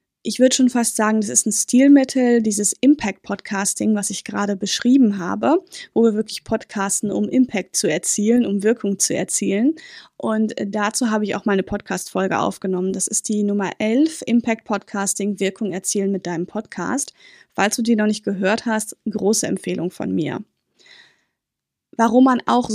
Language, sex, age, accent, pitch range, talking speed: German, female, 20-39, German, 200-245 Hz, 160 wpm